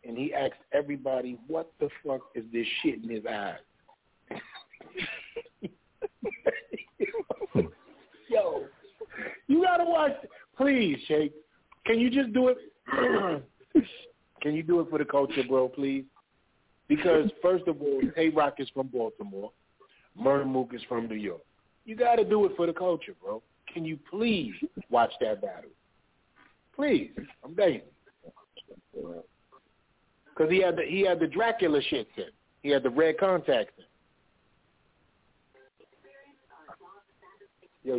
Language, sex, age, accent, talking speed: English, male, 40-59, American, 135 wpm